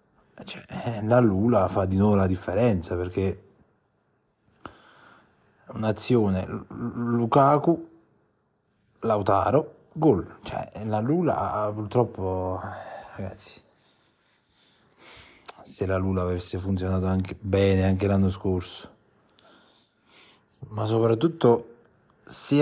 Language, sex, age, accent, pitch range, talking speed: Italian, male, 30-49, native, 95-115 Hz, 80 wpm